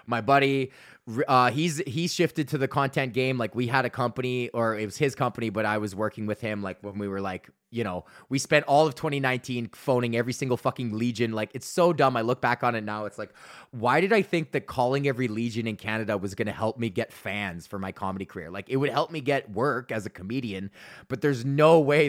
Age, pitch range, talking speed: 20-39, 115-145 Hz, 240 wpm